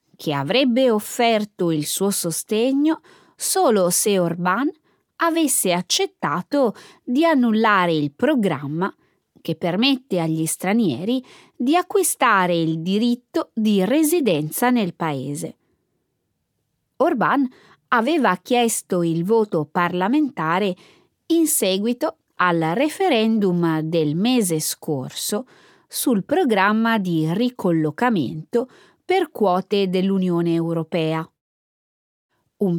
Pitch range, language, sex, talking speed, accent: 175-260 Hz, Italian, female, 90 wpm, native